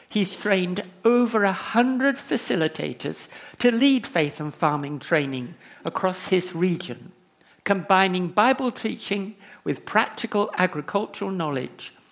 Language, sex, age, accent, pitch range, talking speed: English, male, 60-79, British, 155-205 Hz, 105 wpm